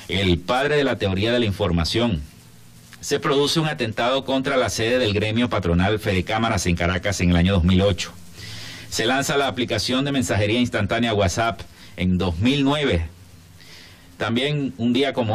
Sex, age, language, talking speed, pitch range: male, 50-69, Spanish, 155 wpm, 85-130 Hz